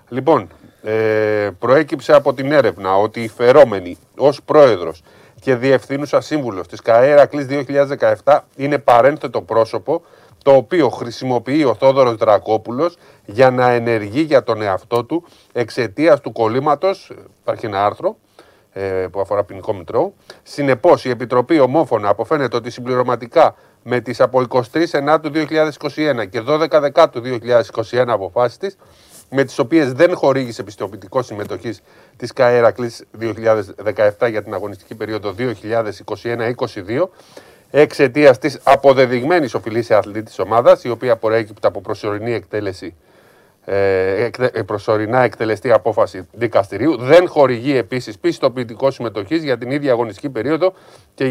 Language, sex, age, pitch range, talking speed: Greek, male, 30-49, 110-145 Hz, 125 wpm